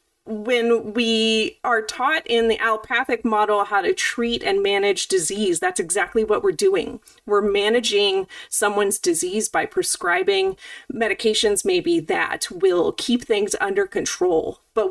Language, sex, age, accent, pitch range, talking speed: English, female, 30-49, American, 230-385 Hz, 135 wpm